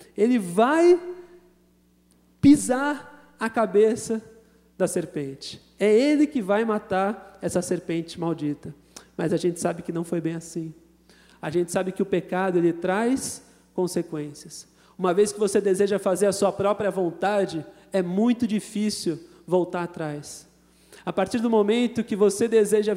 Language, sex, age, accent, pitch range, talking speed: Portuguese, male, 40-59, Brazilian, 160-210 Hz, 145 wpm